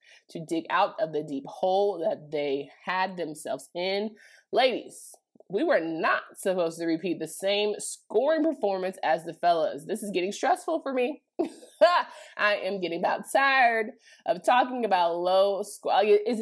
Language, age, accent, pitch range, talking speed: English, 20-39, American, 185-280 Hz, 155 wpm